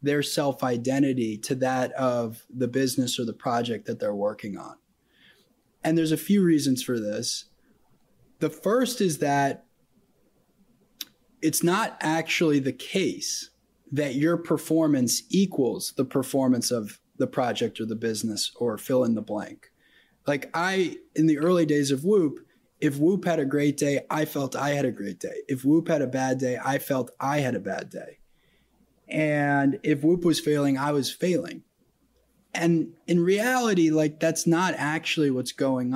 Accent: American